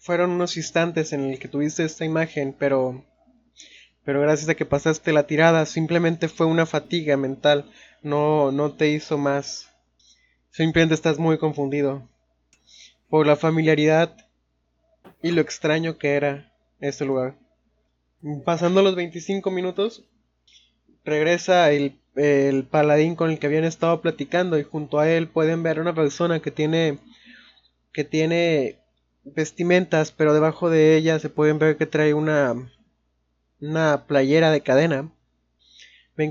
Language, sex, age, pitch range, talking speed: Spanish, male, 20-39, 140-165 Hz, 140 wpm